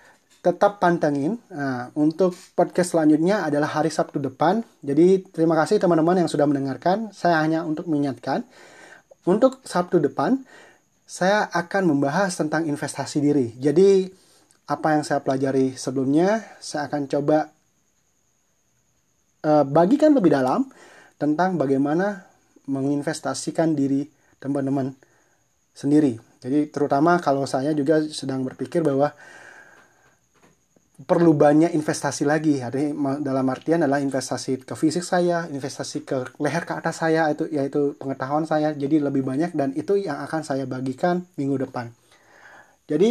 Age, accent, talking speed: 30-49, native, 125 wpm